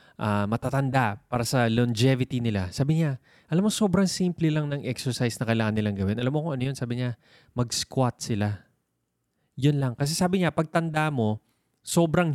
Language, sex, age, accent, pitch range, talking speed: Filipino, male, 20-39, native, 115-150 Hz, 180 wpm